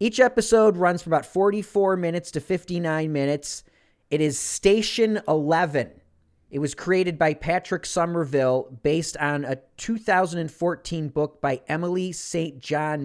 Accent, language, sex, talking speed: American, English, male, 135 wpm